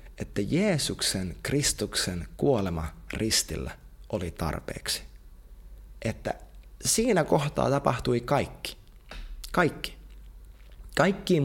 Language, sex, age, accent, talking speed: Finnish, male, 30-49, native, 75 wpm